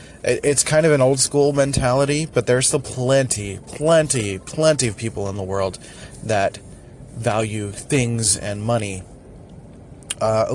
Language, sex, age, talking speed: English, male, 20-39, 130 wpm